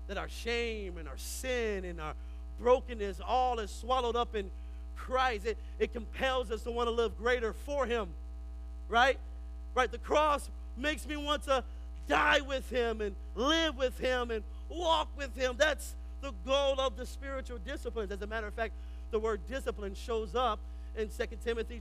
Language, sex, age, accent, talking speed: English, male, 40-59, American, 180 wpm